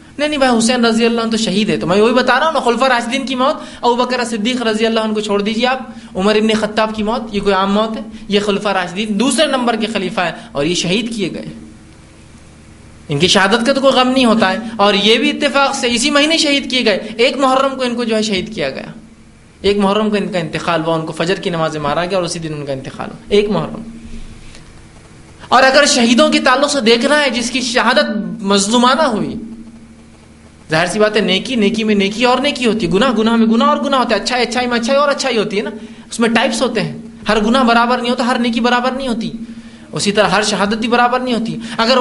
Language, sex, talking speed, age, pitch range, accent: English, male, 165 wpm, 20-39, 200-250 Hz, Indian